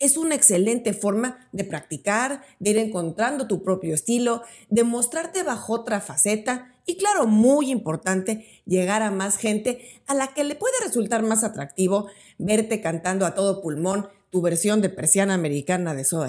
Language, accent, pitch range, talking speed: Spanish, Mexican, 185-255 Hz, 165 wpm